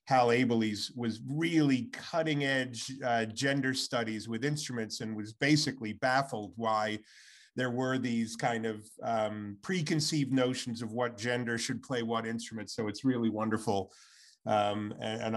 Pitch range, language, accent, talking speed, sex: 115-150 Hz, English, American, 145 wpm, male